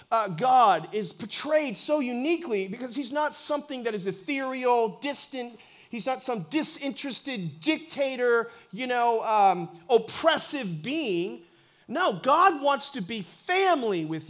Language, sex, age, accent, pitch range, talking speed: English, male, 30-49, American, 210-280 Hz, 130 wpm